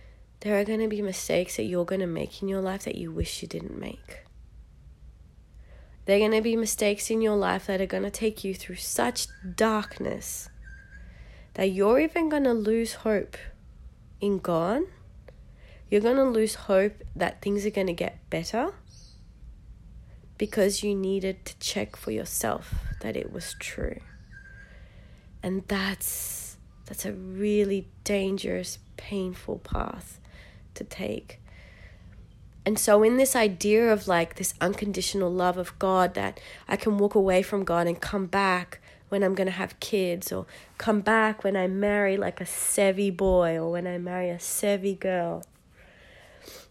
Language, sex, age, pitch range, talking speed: English, female, 30-49, 180-210 Hz, 160 wpm